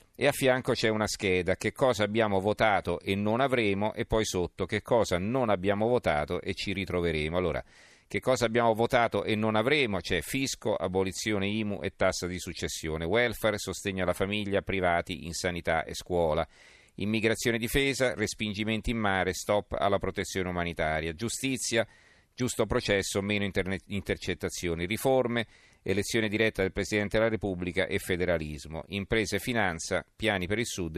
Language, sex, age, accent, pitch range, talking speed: Italian, male, 40-59, native, 90-110 Hz, 155 wpm